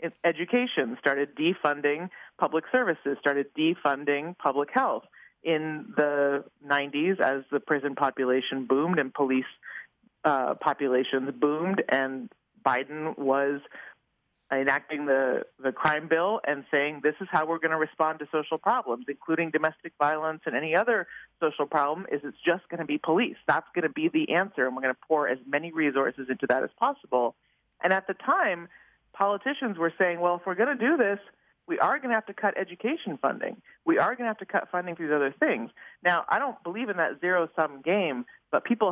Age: 40-59